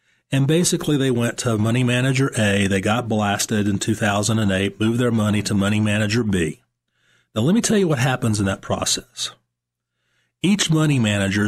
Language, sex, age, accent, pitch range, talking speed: English, male, 40-59, American, 100-130 Hz, 175 wpm